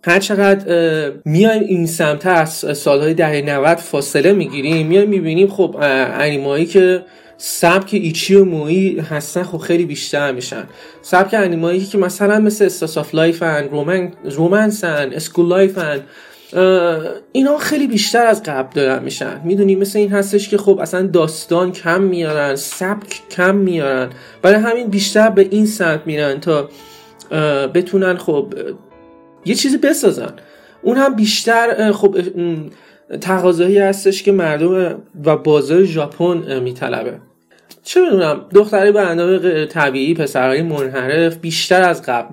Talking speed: 140 wpm